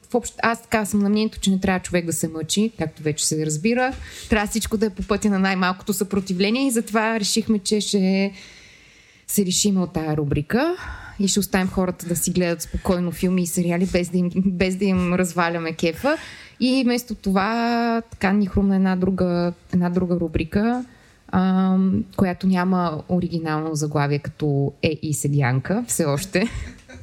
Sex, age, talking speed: female, 20-39, 165 wpm